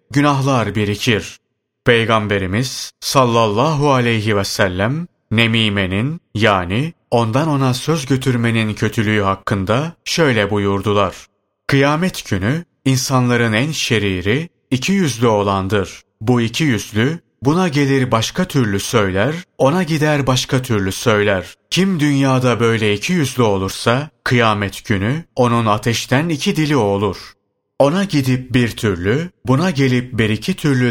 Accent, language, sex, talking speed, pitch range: native, Turkish, male, 115 wpm, 110-140 Hz